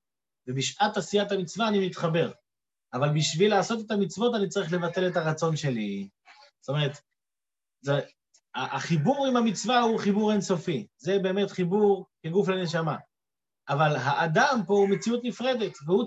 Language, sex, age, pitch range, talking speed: Hebrew, male, 30-49, 160-225 Hz, 140 wpm